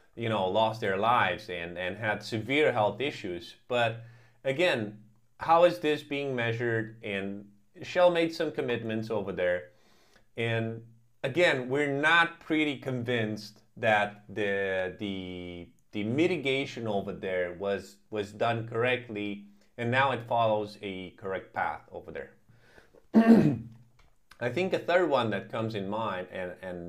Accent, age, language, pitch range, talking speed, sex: American, 30-49, English, 105-140 Hz, 140 wpm, male